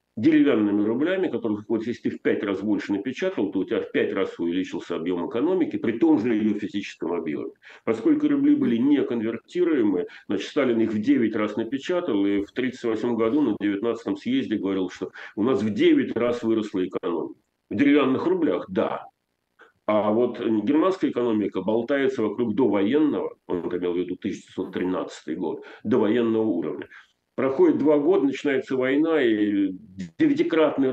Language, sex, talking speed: Russian, male, 155 wpm